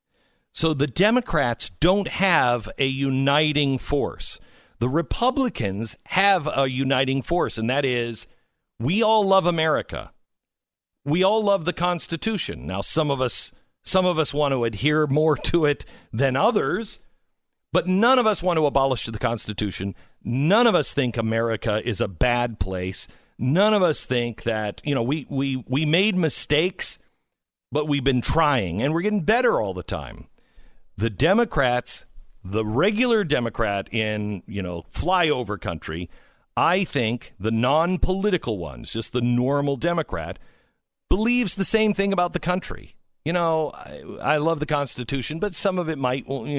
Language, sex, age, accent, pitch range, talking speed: English, male, 50-69, American, 115-180 Hz, 155 wpm